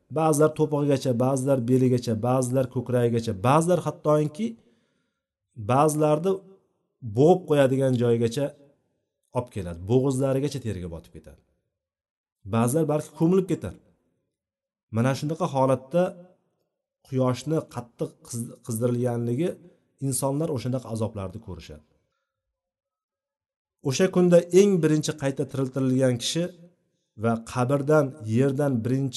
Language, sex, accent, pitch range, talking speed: Russian, male, Turkish, 115-160 Hz, 75 wpm